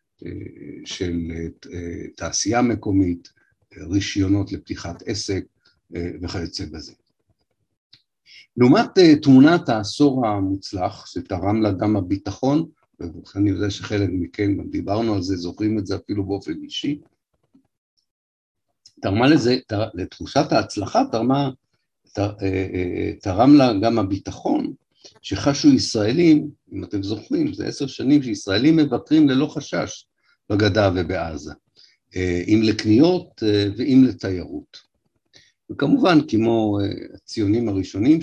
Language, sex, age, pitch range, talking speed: Hebrew, male, 60-79, 95-115 Hz, 95 wpm